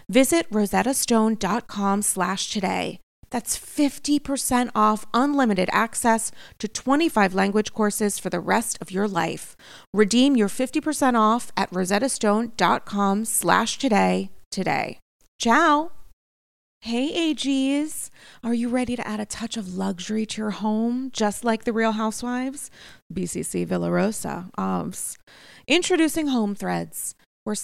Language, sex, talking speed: English, female, 115 wpm